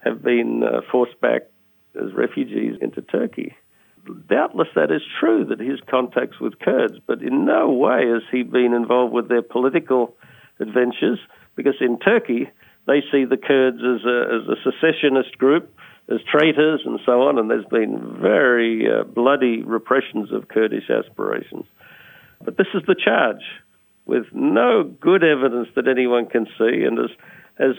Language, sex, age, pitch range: English, male, 50-69, 120-145 Hz